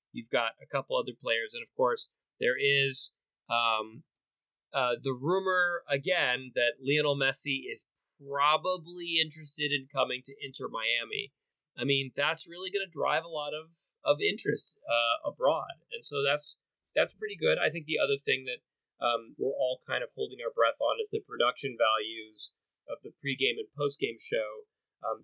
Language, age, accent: English, 30-49, American